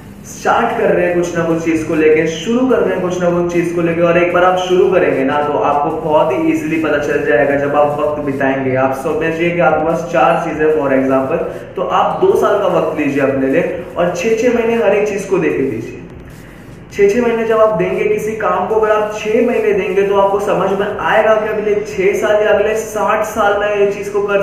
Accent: native